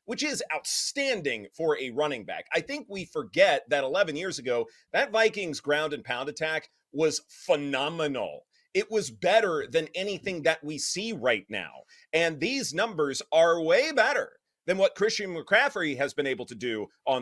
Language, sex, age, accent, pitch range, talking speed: English, male, 30-49, American, 150-225 Hz, 170 wpm